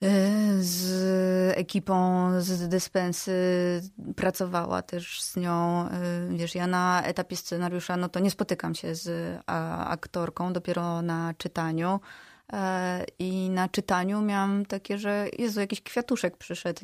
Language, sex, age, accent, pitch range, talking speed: Polish, female, 20-39, native, 175-200 Hz, 120 wpm